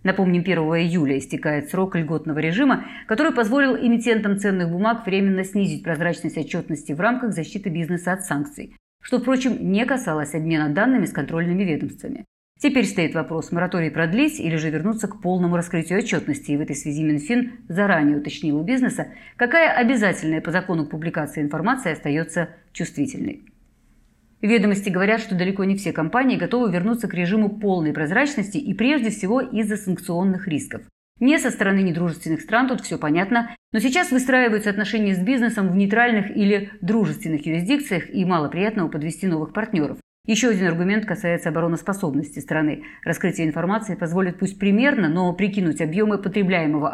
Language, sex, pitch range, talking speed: Russian, female, 160-220 Hz, 150 wpm